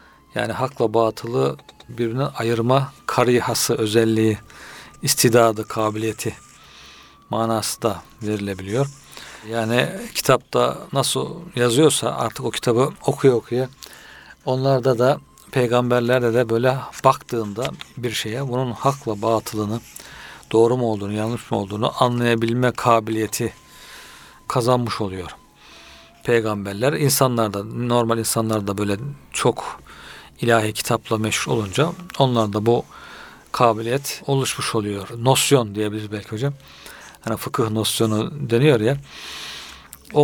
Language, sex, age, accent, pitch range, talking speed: Turkish, male, 50-69, native, 110-135 Hz, 100 wpm